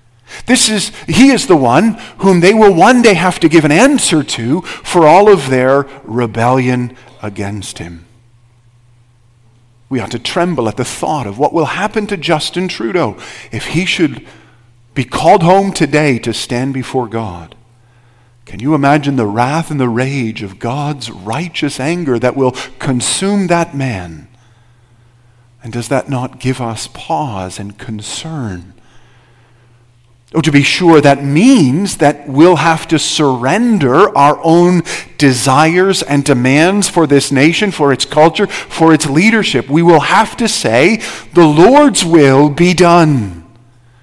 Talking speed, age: 150 wpm, 50-69